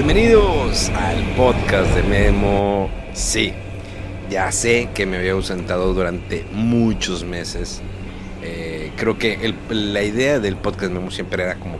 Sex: male